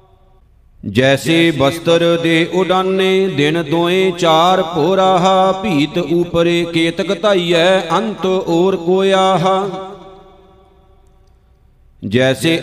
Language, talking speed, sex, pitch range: Punjabi, 75 wpm, male, 165-190 Hz